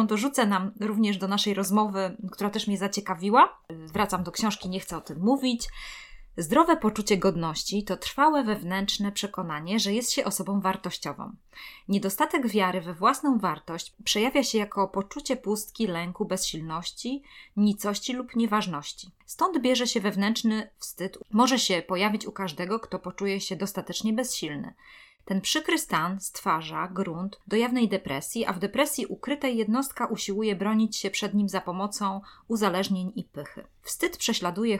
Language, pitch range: Polish, 185-225 Hz